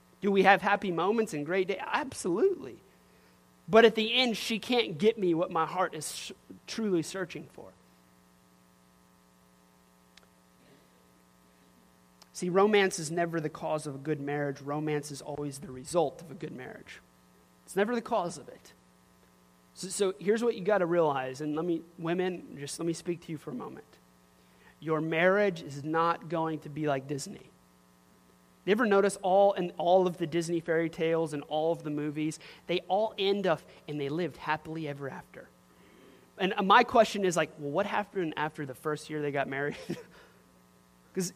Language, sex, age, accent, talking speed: English, male, 30-49, American, 175 wpm